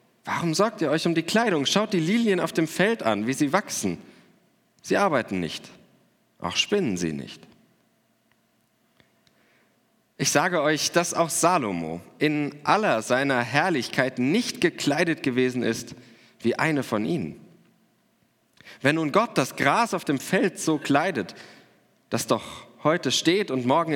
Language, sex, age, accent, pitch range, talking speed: German, male, 40-59, German, 125-175 Hz, 145 wpm